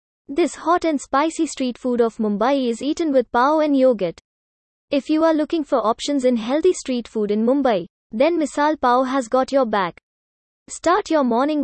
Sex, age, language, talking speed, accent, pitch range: female, 20-39, English, 185 wpm, Indian, 230-295 Hz